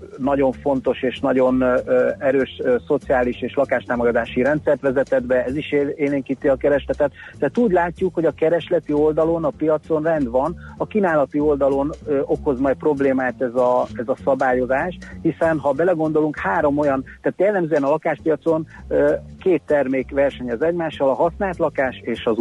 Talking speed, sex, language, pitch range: 150 wpm, male, Hungarian, 125-155 Hz